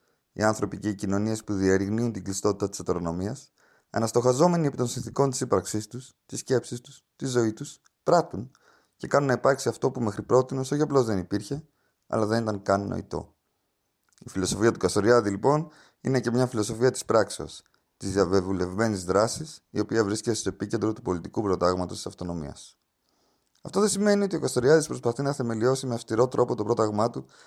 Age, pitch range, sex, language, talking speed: 30-49, 105-130 Hz, male, Greek, 175 wpm